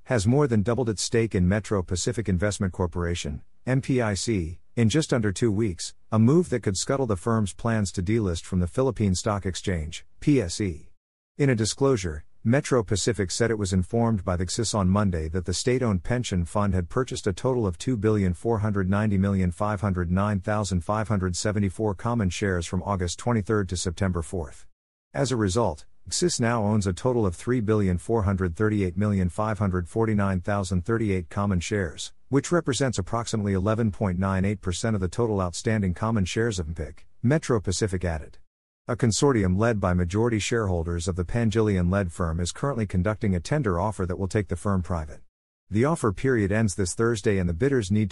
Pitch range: 90-115 Hz